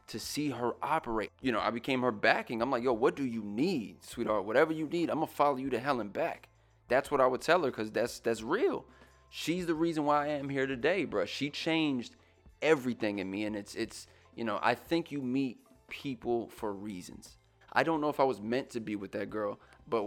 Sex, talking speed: male, 235 wpm